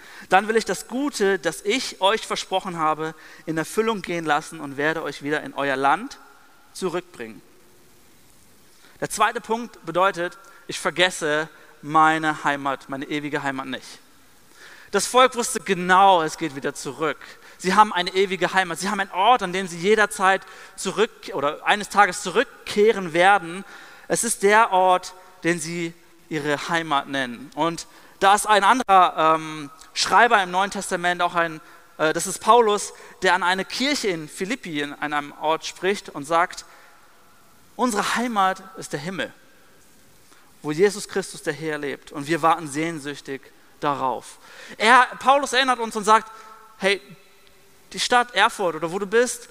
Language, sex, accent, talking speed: German, male, German, 155 wpm